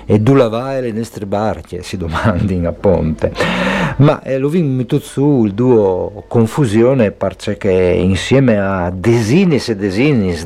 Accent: native